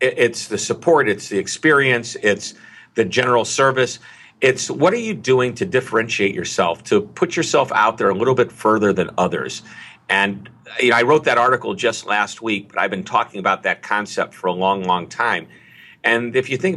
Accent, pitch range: American, 100-120 Hz